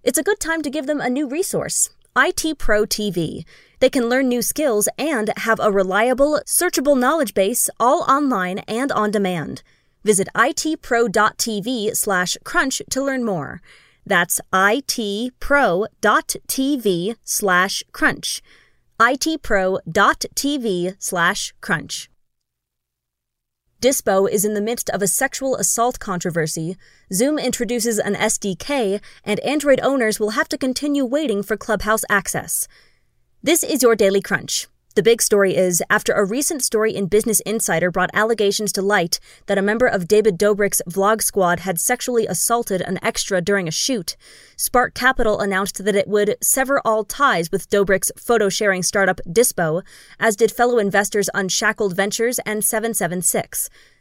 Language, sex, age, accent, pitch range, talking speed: English, female, 20-39, American, 195-250 Hz, 140 wpm